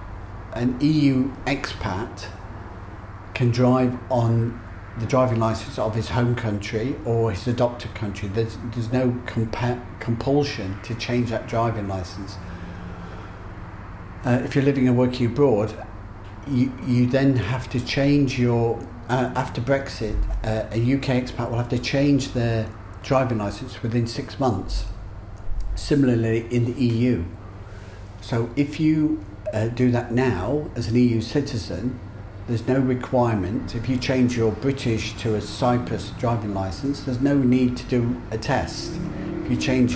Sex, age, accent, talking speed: male, 50-69, British, 145 wpm